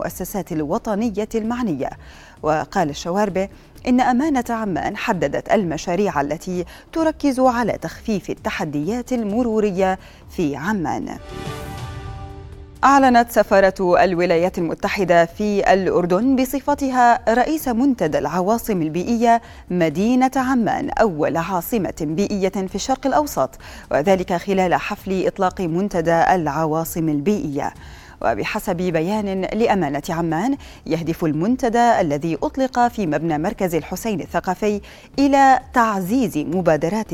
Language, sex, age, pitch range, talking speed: Arabic, female, 30-49, 175-235 Hz, 95 wpm